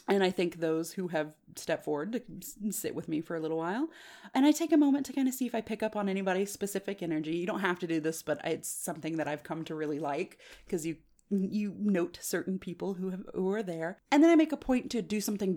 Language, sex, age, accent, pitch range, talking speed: English, female, 30-49, American, 160-245 Hz, 260 wpm